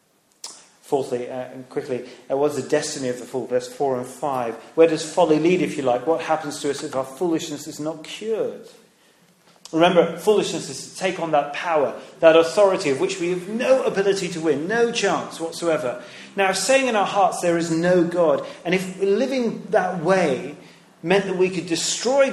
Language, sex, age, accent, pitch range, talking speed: English, male, 40-59, British, 160-215 Hz, 195 wpm